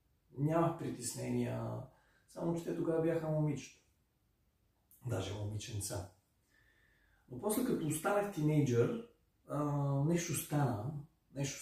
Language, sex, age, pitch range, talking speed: Bulgarian, male, 40-59, 115-150 Hz, 95 wpm